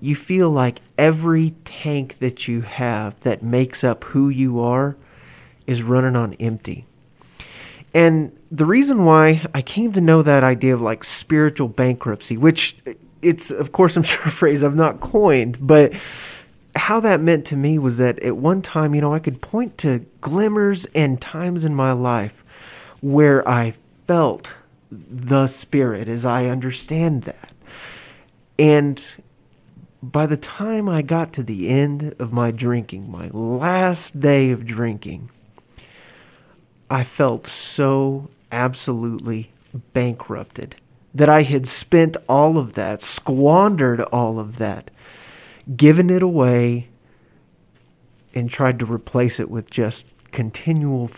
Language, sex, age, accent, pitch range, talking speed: English, male, 30-49, American, 120-155 Hz, 140 wpm